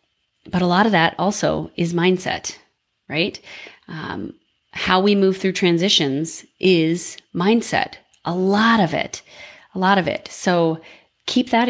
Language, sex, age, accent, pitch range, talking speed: English, female, 30-49, American, 155-200 Hz, 145 wpm